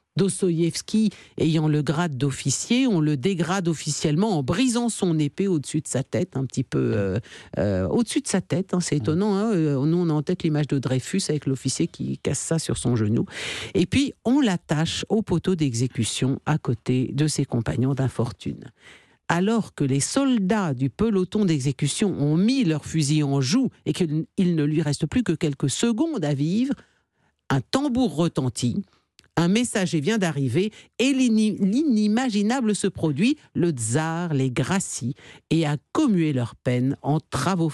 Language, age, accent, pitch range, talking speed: French, 50-69, French, 140-205 Hz, 170 wpm